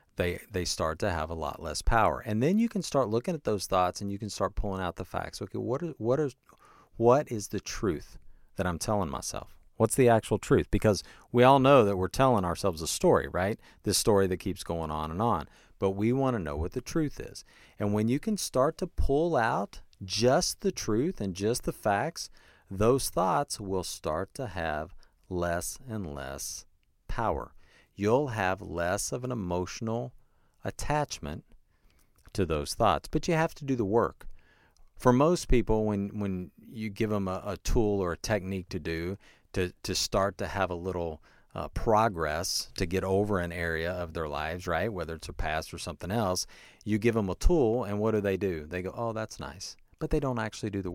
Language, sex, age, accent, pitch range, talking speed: English, male, 40-59, American, 85-115 Hz, 205 wpm